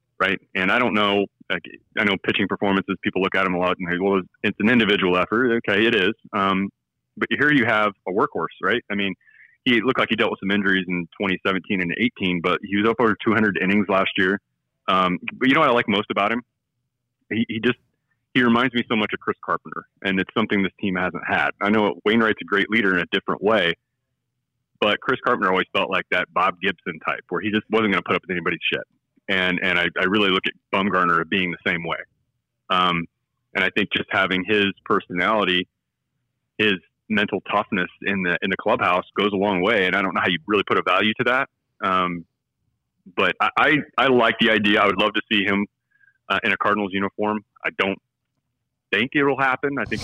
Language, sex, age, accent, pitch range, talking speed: English, male, 30-49, American, 95-115 Hz, 225 wpm